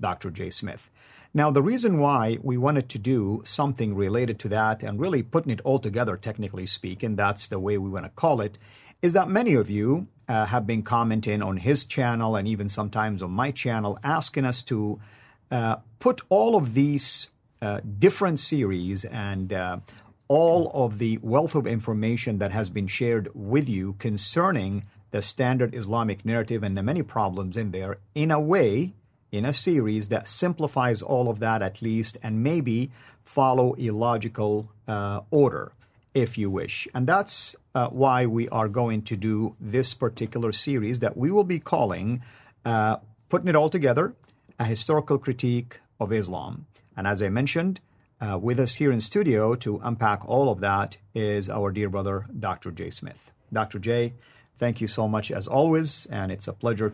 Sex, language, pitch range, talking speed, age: male, English, 105-130 Hz, 180 wpm, 50-69